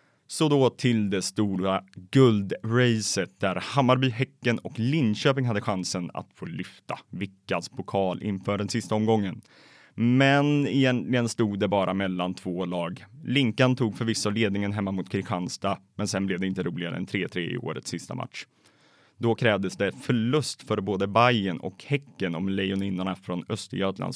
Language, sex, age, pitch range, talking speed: Swedish, male, 20-39, 95-130 Hz, 155 wpm